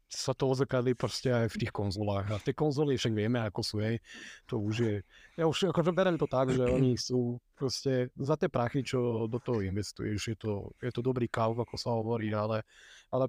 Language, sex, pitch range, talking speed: Slovak, male, 110-135 Hz, 210 wpm